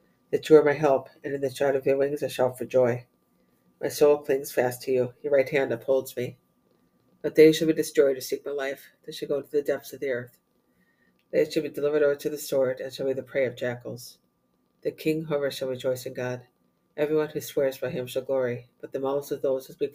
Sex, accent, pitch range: female, American, 125-145 Hz